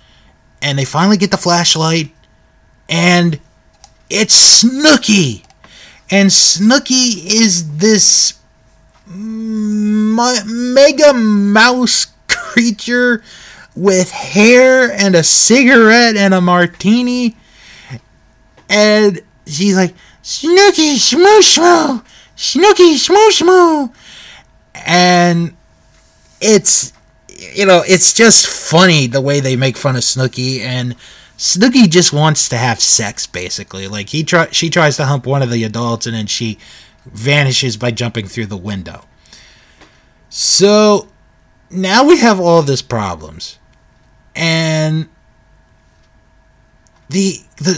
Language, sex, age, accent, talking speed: English, male, 20-39, American, 105 wpm